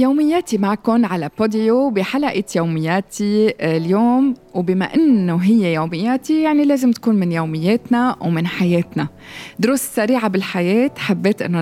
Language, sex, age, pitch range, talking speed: Arabic, female, 20-39, 175-240 Hz, 120 wpm